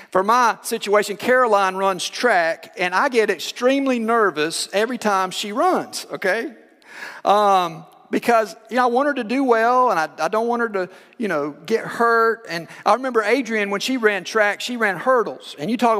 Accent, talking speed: American, 190 wpm